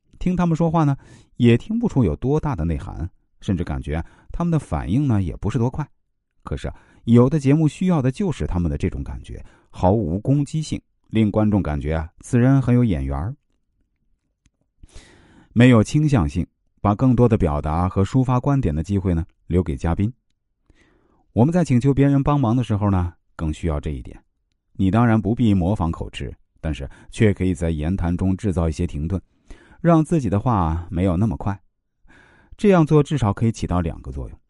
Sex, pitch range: male, 85-130 Hz